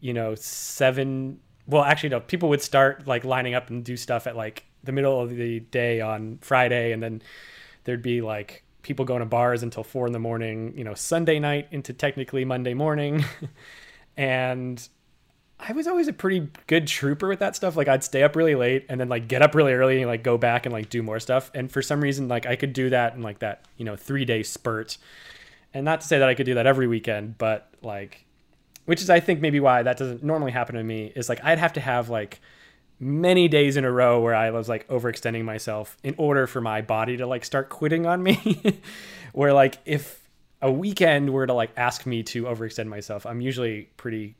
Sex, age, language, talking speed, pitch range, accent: male, 20-39, English, 225 wpm, 115-145 Hz, American